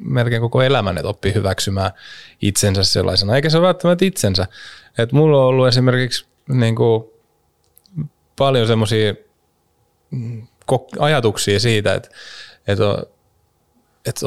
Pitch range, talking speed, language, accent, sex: 100-125 Hz, 105 wpm, Finnish, native, male